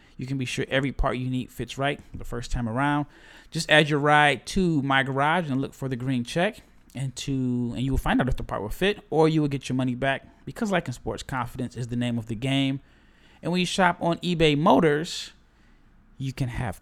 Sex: male